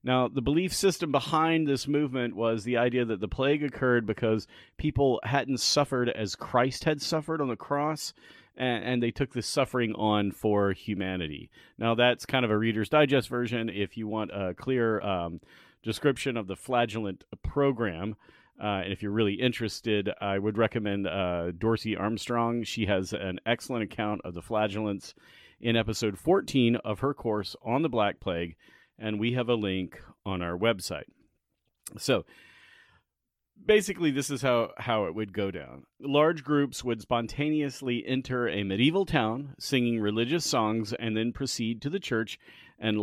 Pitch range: 105-140 Hz